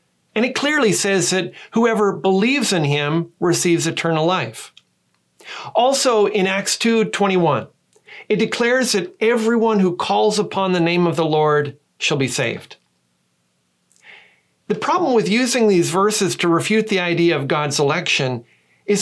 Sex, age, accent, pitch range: male, 40-59, American, 155-210 Hz